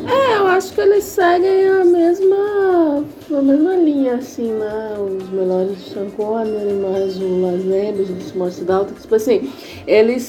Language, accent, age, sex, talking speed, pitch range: Portuguese, Brazilian, 20-39, female, 170 wpm, 195-325 Hz